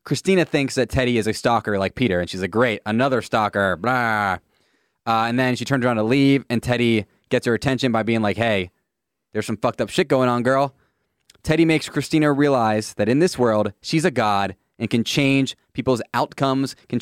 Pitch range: 110-145 Hz